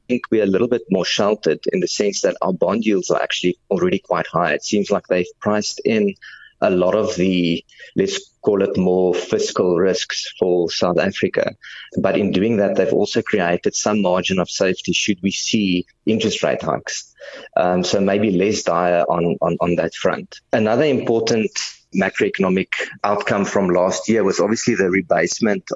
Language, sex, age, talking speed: English, male, 30-49, 175 wpm